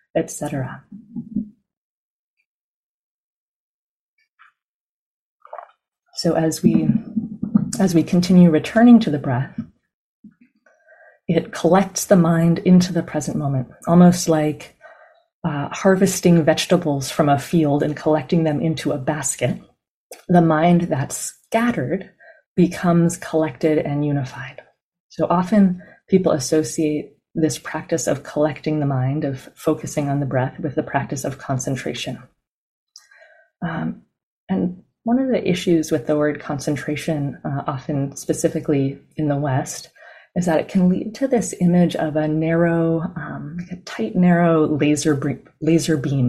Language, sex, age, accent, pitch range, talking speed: English, female, 30-49, American, 150-190 Hz, 125 wpm